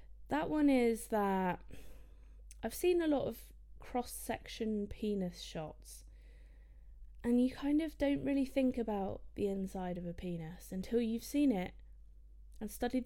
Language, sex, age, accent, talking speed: English, female, 20-39, British, 145 wpm